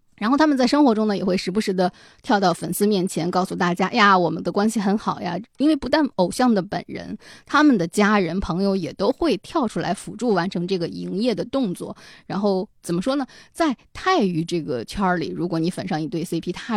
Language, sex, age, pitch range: Chinese, female, 20-39, 175-240 Hz